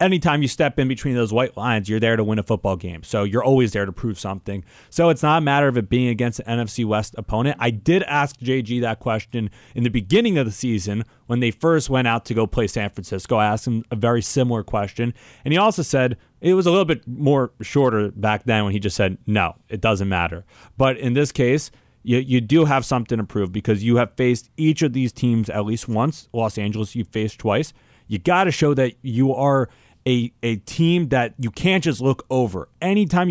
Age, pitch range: 30-49, 110-145 Hz